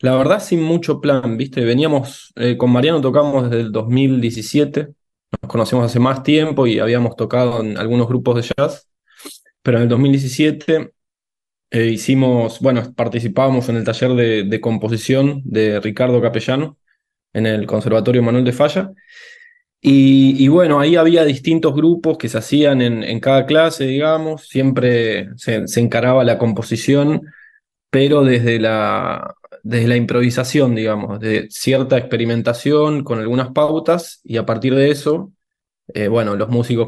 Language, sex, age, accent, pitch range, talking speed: Spanish, male, 20-39, Argentinian, 115-145 Hz, 150 wpm